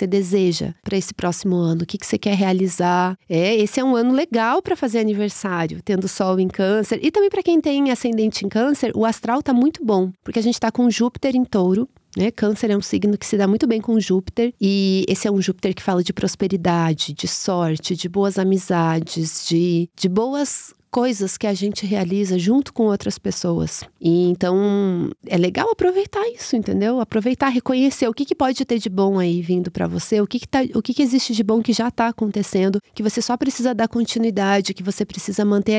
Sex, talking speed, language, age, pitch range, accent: female, 215 wpm, Portuguese, 30-49, 185-230 Hz, Brazilian